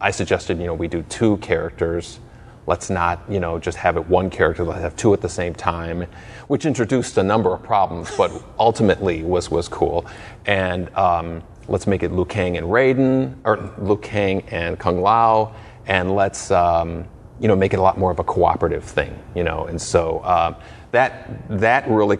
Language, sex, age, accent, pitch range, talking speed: English, male, 30-49, American, 85-105 Hz, 195 wpm